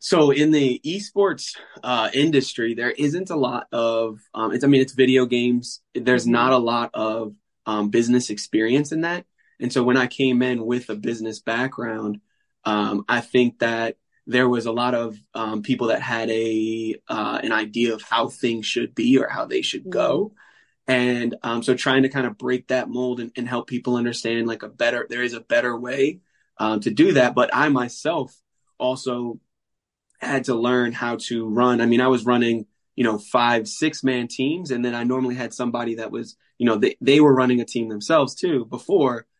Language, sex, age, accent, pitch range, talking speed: English, male, 20-39, American, 115-130 Hz, 200 wpm